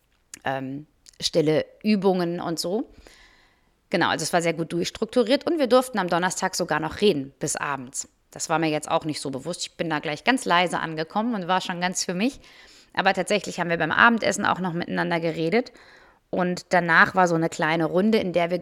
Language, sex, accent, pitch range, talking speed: German, female, German, 165-215 Hz, 205 wpm